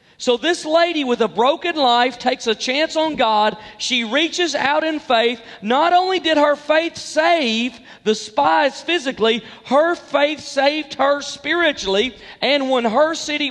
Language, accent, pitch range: English, American, 230-295 Hz